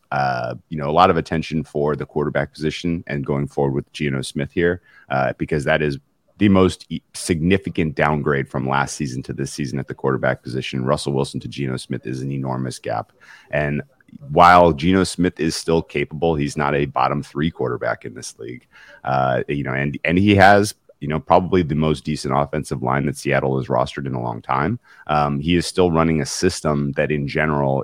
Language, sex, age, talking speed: English, male, 30-49, 205 wpm